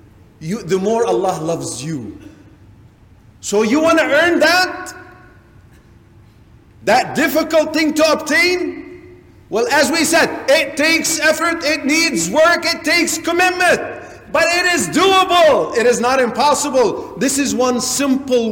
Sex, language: male, English